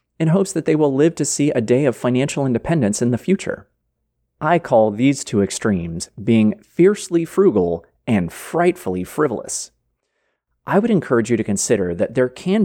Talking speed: 170 wpm